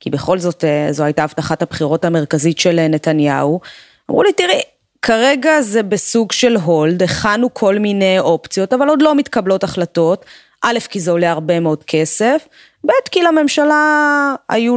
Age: 20-39